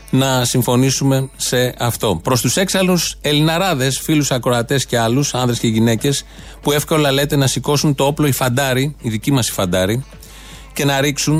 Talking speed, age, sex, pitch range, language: 170 wpm, 30-49, male, 125-150 Hz, Greek